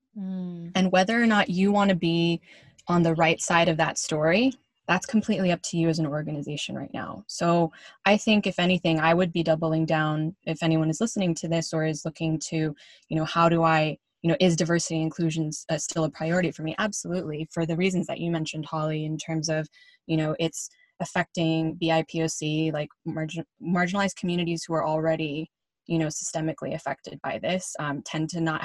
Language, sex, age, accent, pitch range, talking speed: English, female, 10-29, American, 160-180 Hz, 195 wpm